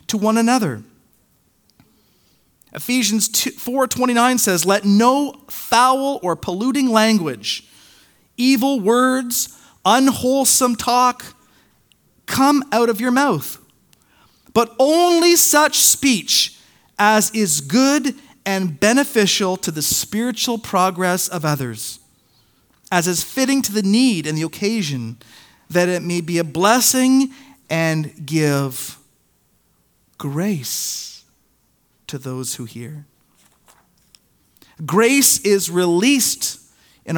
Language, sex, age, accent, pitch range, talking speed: English, male, 40-59, American, 165-255 Hz, 100 wpm